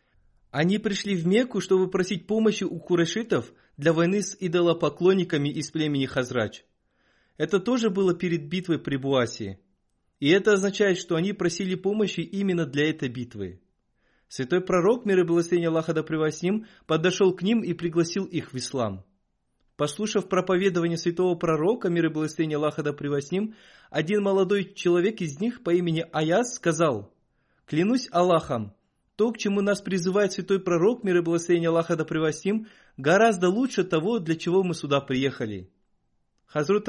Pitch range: 150-195 Hz